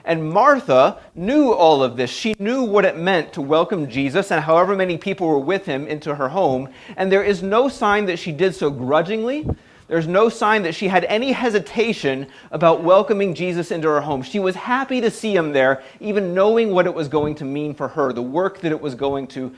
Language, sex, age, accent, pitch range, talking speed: English, male, 30-49, American, 130-190 Hz, 220 wpm